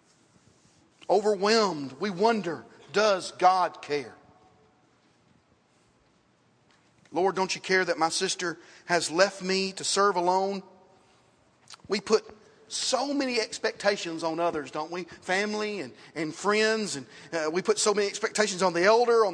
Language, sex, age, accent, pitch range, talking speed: English, male, 40-59, American, 165-215 Hz, 135 wpm